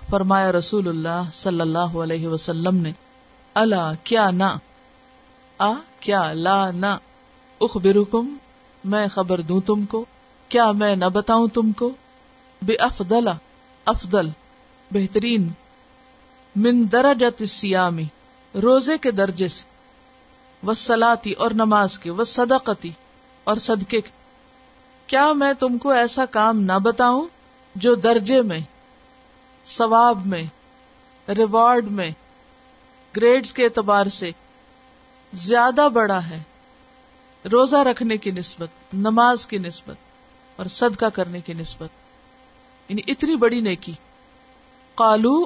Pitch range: 190-260 Hz